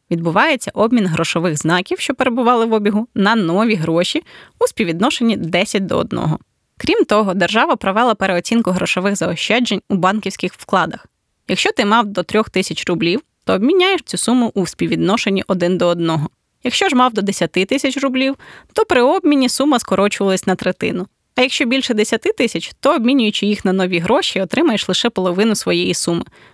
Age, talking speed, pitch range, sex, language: 20-39, 165 wpm, 180-240 Hz, female, Ukrainian